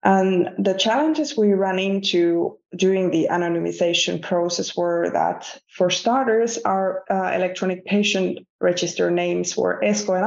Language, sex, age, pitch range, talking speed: English, female, 20-39, 175-210 Hz, 135 wpm